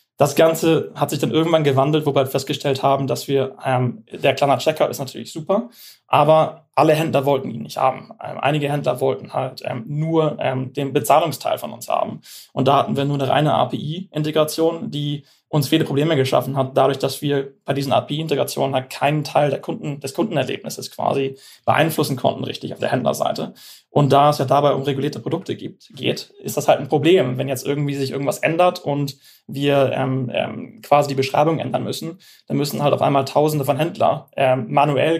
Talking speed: 195 wpm